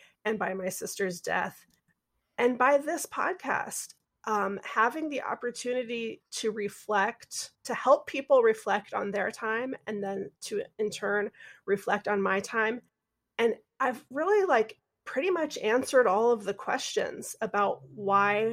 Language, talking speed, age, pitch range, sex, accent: English, 145 wpm, 30-49, 200-245 Hz, female, American